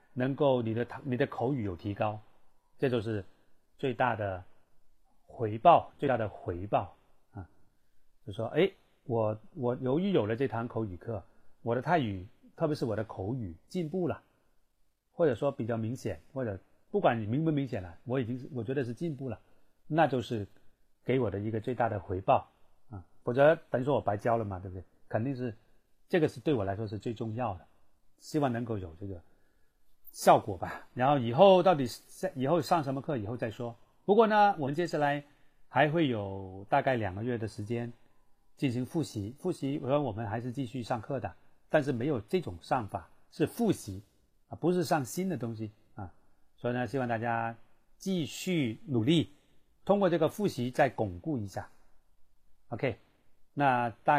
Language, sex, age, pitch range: Chinese, male, 30-49, 105-145 Hz